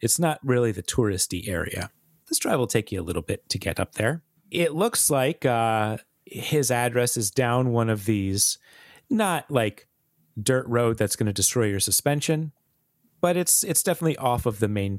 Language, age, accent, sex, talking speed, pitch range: English, 30-49, American, male, 190 wpm, 105-145 Hz